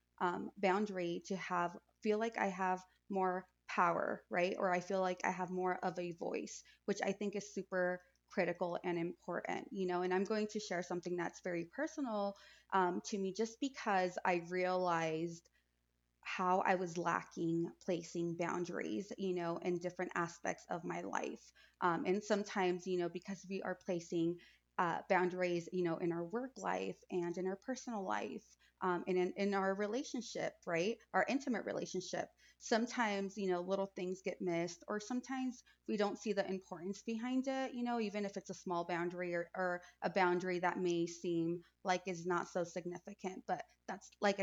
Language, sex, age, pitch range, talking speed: English, female, 20-39, 175-200 Hz, 180 wpm